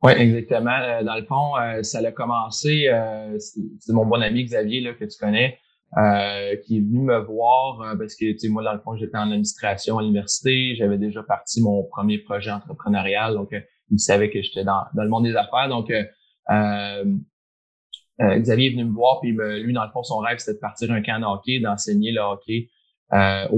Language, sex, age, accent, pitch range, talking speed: French, male, 20-39, Canadian, 105-120 Hz, 200 wpm